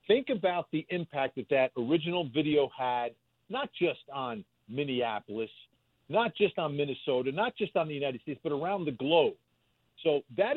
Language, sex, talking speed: English, male, 165 wpm